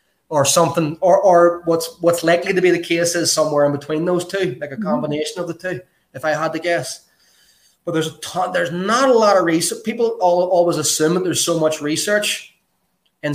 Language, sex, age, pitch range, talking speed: English, male, 20-39, 140-170 Hz, 215 wpm